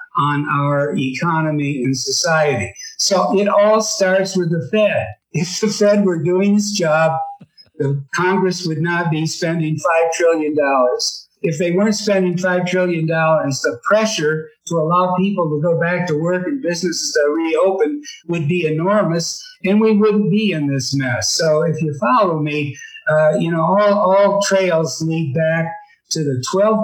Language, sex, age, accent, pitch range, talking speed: English, male, 60-79, American, 155-195 Hz, 165 wpm